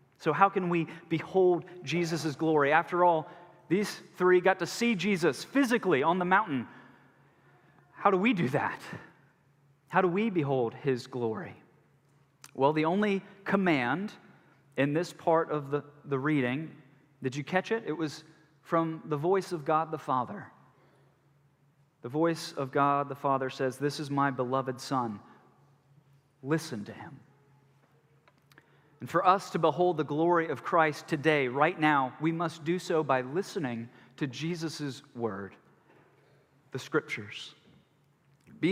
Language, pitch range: English, 140-180 Hz